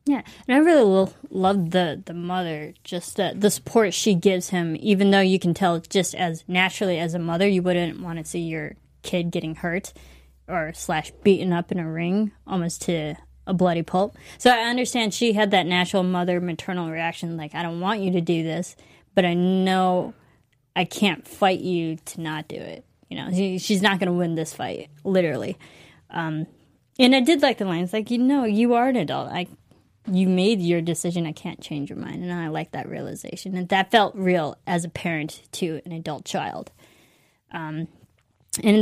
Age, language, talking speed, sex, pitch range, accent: 20-39, English, 200 wpm, female, 170-200 Hz, American